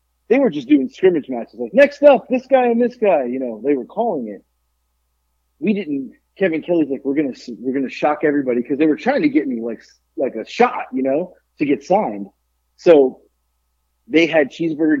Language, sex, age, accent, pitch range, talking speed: English, male, 30-49, American, 115-185 Hz, 210 wpm